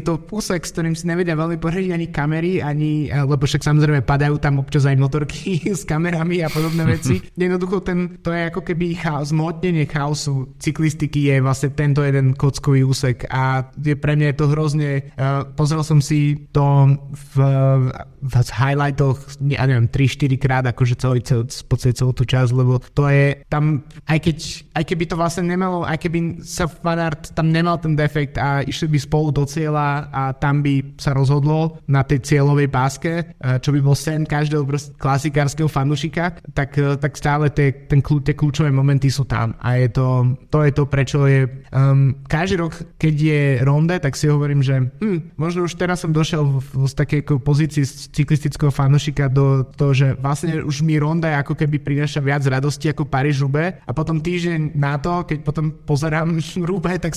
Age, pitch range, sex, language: 20-39, 140-160 Hz, male, Slovak